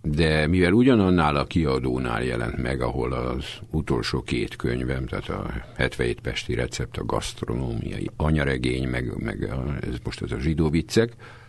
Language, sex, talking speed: Hungarian, male, 150 wpm